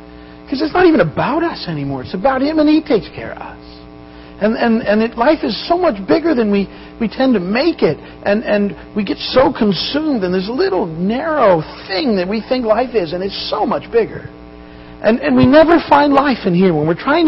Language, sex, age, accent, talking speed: English, male, 50-69, American, 220 wpm